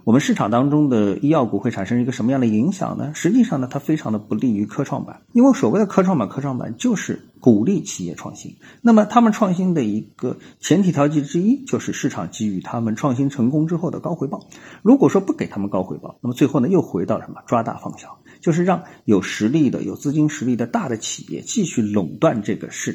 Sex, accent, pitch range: male, native, 105-175 Hz